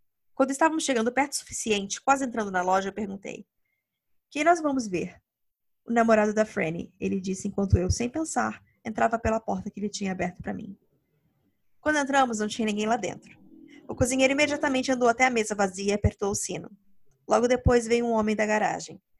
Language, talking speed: Portuguese, 190 wpm